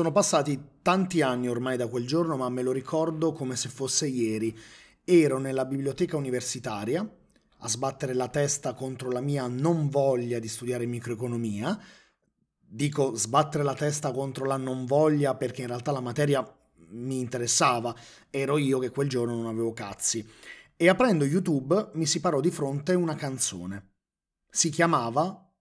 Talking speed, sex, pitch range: 155 wpm, male, 125-165 Hz